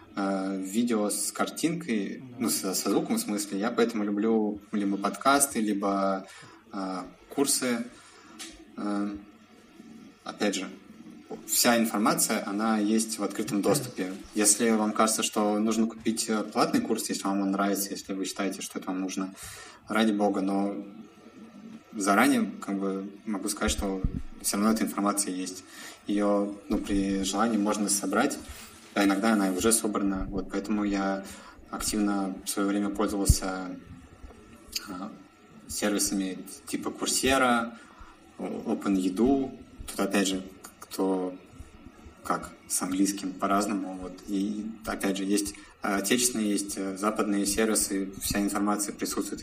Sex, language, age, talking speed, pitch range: male, Russian, 20-39, 120 wpm, 95-105 Hz